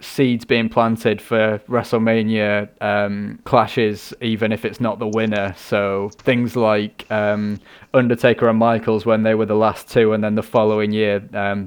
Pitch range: 105-125 Hz